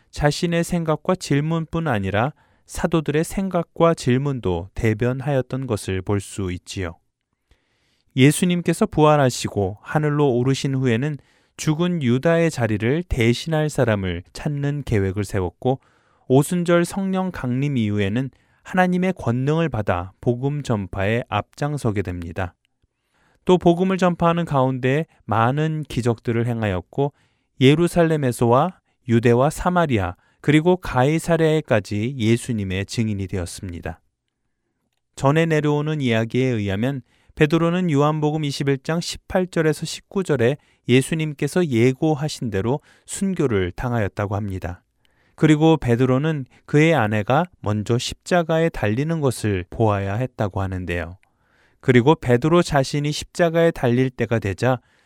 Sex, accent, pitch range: male, native, 110-155 Hz